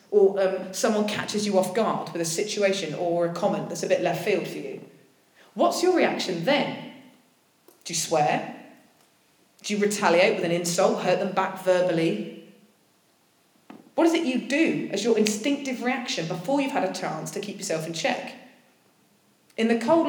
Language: English